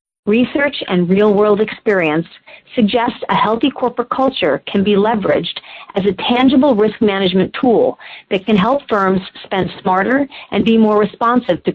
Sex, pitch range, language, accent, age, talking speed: female, 180-225 Hz, English, American, 40-59, 155 wpm